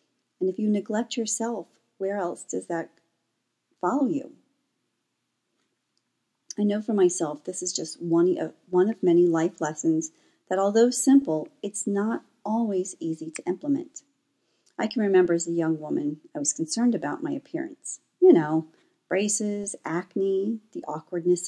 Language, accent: English, American